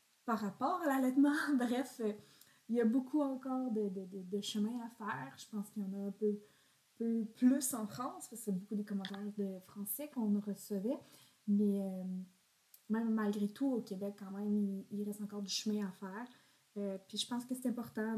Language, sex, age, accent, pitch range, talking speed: French, female, 20-39, Canadian, 200-230 Hz, 210 wpm